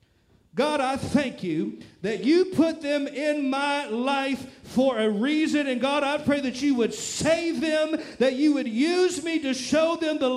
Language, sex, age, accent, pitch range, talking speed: English, male, 50-69, American, 225-310 Hz, 185 wpm